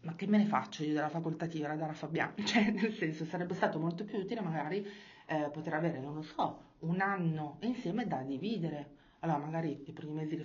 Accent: native